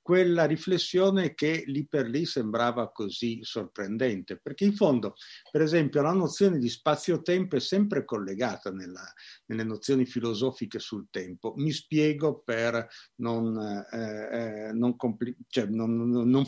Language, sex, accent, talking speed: Italian, male, native, 125 wpm